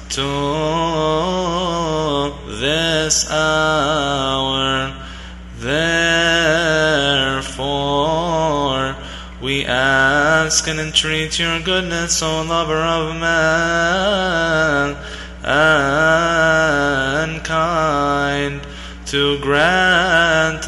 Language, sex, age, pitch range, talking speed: English, male, 20-39, 145-160 Hz, 50 wpm